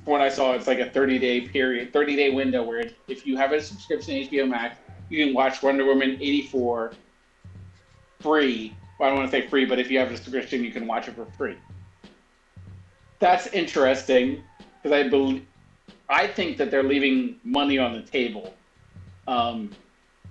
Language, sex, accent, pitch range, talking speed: English, male, American, 115-150 Hz, 185 wpm